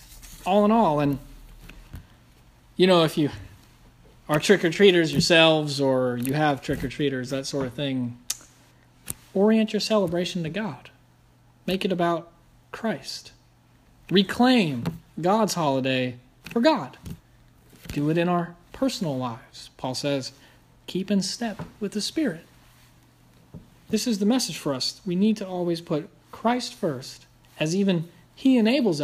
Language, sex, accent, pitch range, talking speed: English, male, American, 125-175 Hz, 130 wpm